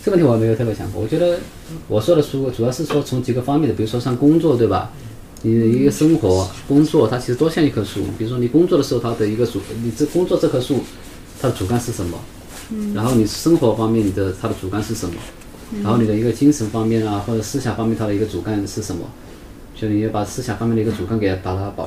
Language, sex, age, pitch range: Chinese, male, 20-39, 100-135 Hz